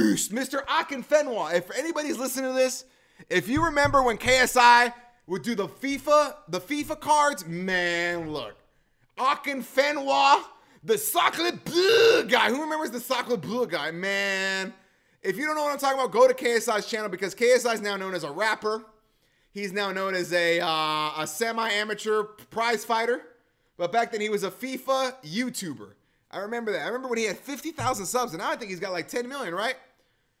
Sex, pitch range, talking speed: male, 195-260 Hz, 180 wpm